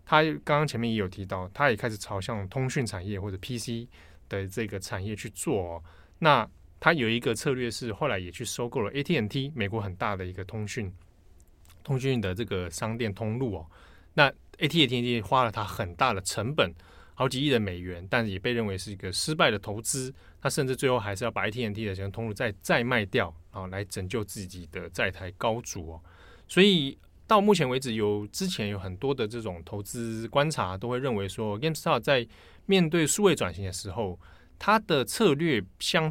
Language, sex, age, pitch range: Chinese, male, 20-39, 95-125 Hz